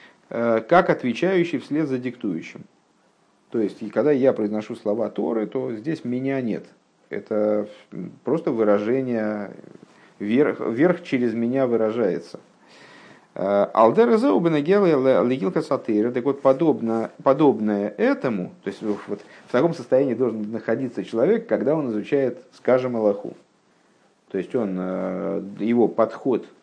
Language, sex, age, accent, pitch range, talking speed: Russian, male, 50-69, native, 105-140 Hz, 115 wpm